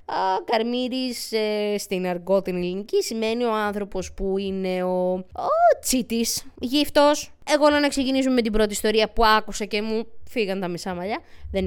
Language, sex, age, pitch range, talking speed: Greek, female, 20-39, 195-300 Hz, 160 wpm